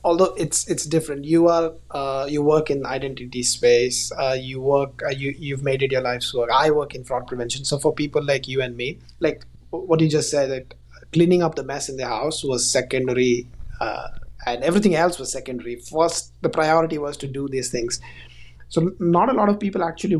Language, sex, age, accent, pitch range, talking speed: English, male, 20-39, Indian, 130-160 Hz, 210 wpm